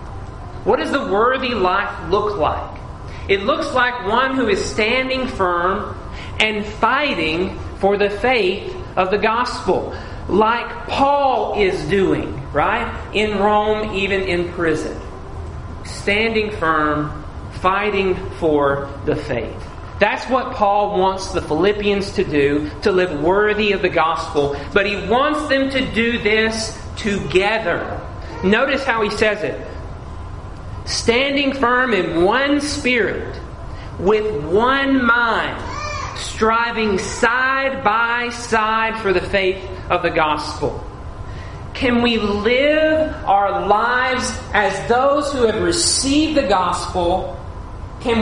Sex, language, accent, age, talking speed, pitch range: male, English, American, 40-59, 120 wpm, 165-240 Hz